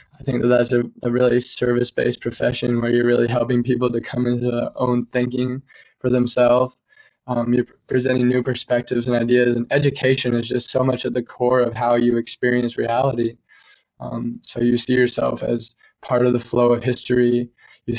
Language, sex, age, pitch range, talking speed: English, male, 20-39, 120-135 Hz, 185 wpm